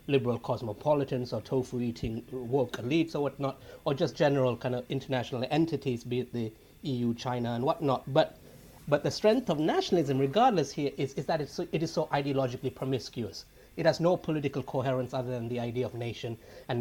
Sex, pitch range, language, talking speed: male, 125-155 Hz, English, 185 wpm